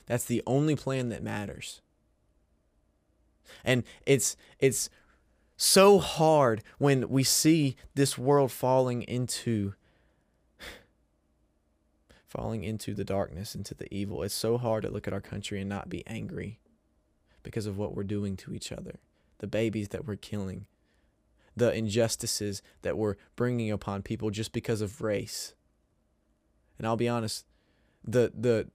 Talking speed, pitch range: 140 wpm, 100-125 Hz